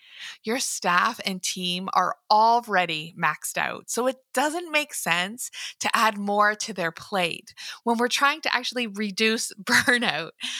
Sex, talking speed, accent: female, 145 wpm, American